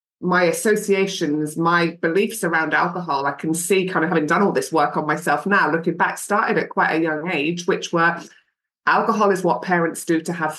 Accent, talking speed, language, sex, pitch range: British, 205 wpm, English, female, 160-190 Hz